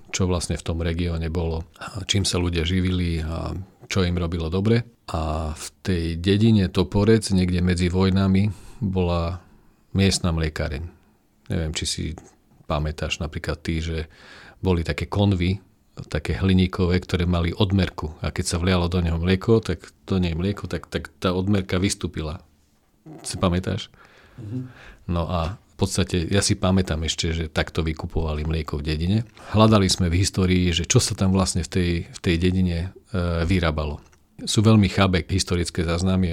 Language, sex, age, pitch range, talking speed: Slovak, male, 40-59, 80-95 Hz, 155 wpm